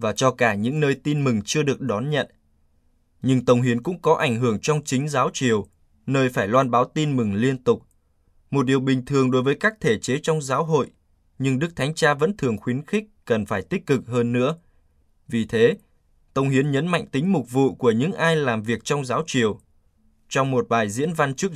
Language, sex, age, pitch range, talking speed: Vietnamese, male, 20-39, 110-145 Hz, 220 wpm